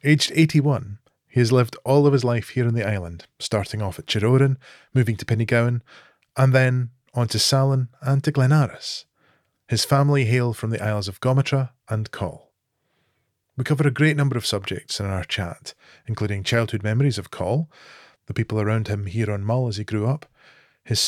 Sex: male